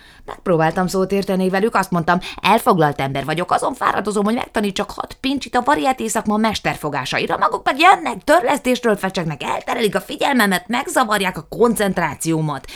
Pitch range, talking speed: 155-220 Hz, 140 wpm